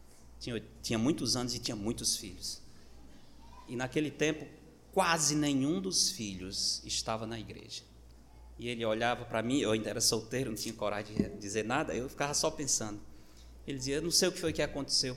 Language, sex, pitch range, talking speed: Portuguese, male, 105-140 Hz, 185 wpm